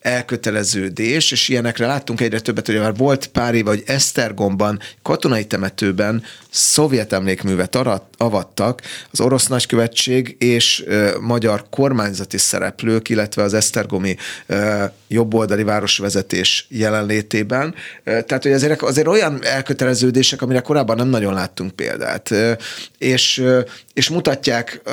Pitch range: 105-130 Hz